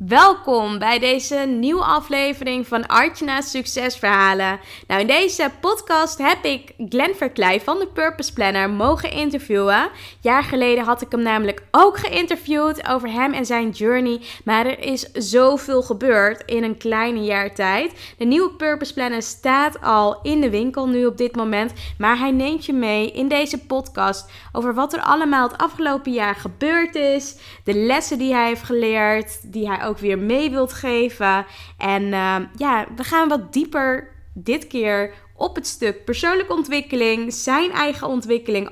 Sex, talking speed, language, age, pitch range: female, 165 wpm, Dutch, 20-39, 215-290 Hz